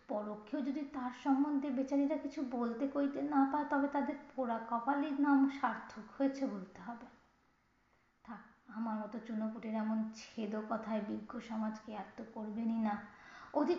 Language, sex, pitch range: Bengali, female, 220-275 Hz